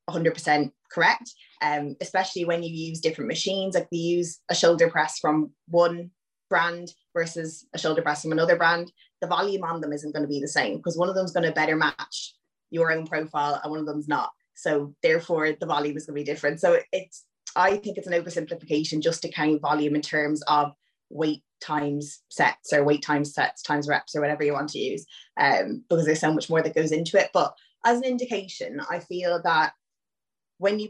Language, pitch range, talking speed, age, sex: English, 150-175 Hz, 210 wpm, 20-39, female